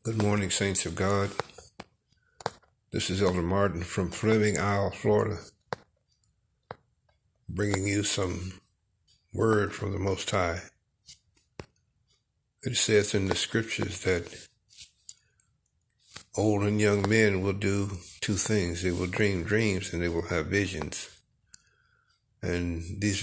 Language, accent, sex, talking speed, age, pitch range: English, American, male, 120 wpm, 60-79, 90-105 Hz